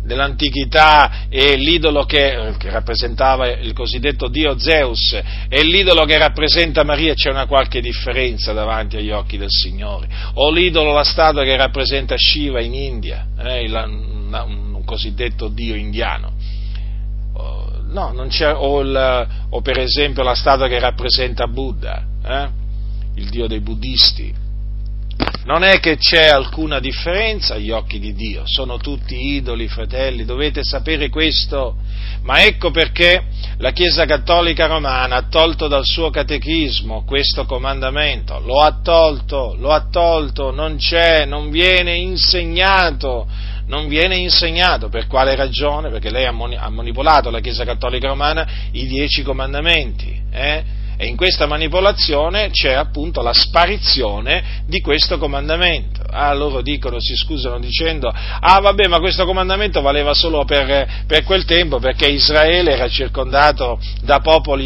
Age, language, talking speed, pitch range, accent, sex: 40-59, Italian, 140 wpm, 110-150 Hz, native, male